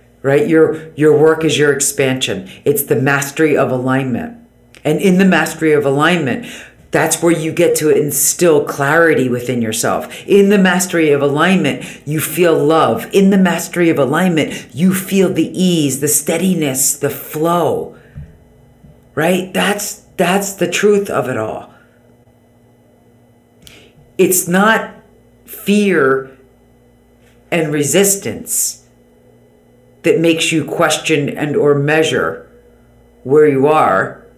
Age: 50-69